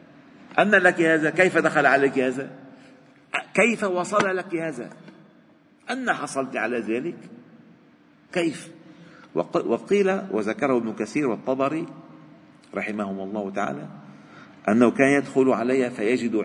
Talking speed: 105 wpm